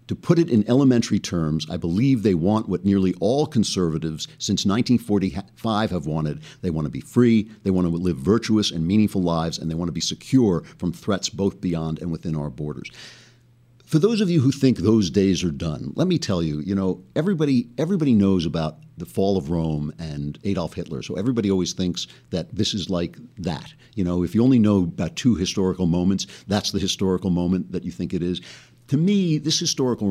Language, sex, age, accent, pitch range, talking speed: English, male, 50-69, American, 90-120 Hz, 205 wpm